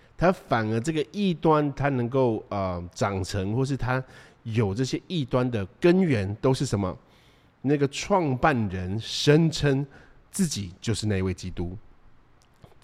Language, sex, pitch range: Chinese, male, 105-145 Hz